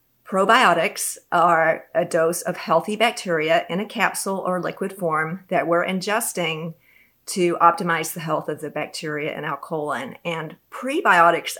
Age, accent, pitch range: 40-59, American, 165-200 Hz